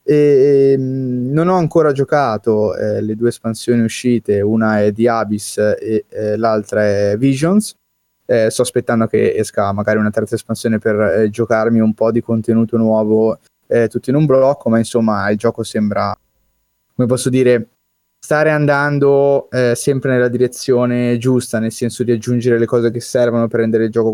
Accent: native